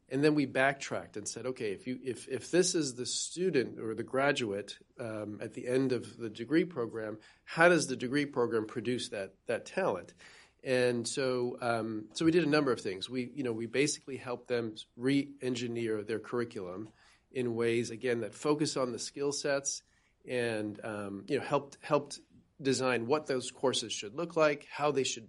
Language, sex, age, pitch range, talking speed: English, male, 40-59, 115-140 Hz, 190 wpm